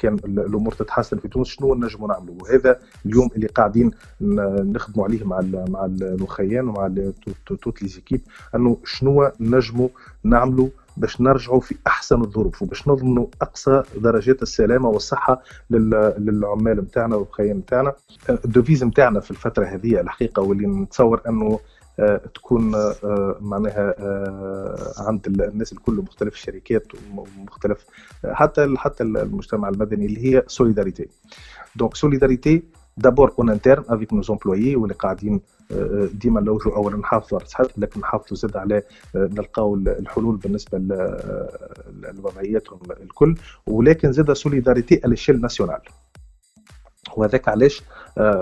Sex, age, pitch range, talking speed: male, 30-49, 100-130 Hz, 125 wpm